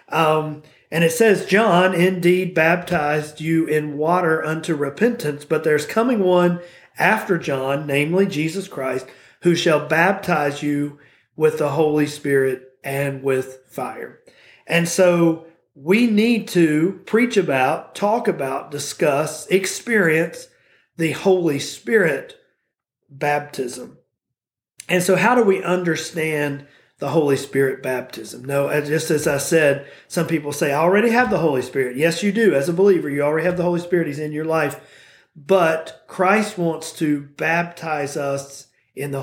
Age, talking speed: 40-59, 145 wpm